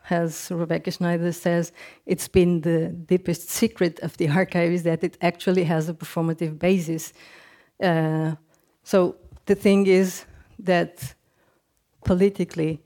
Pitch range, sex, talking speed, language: 165-185 Hz, female, 125 wpm, English